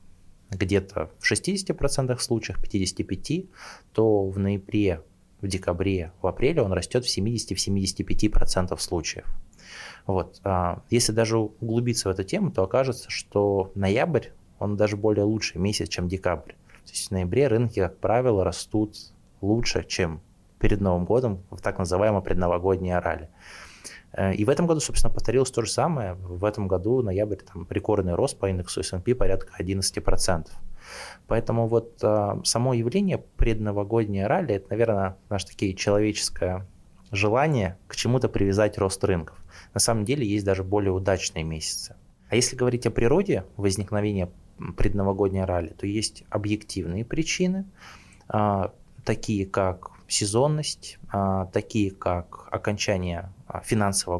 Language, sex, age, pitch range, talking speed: Russian, male, 20-39, 95-110 Hz, 130 wpm